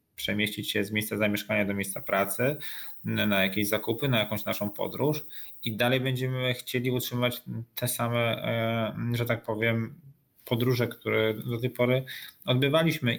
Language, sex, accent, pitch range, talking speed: Polish, male, native, 110-130 Hz, 140 wpm